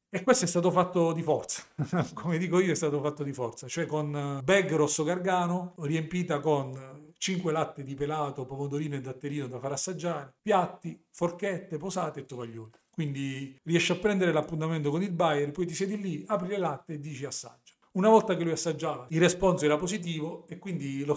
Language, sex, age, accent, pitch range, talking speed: Italian, male, 40-59, native, 140-170 Hz, 190 wpm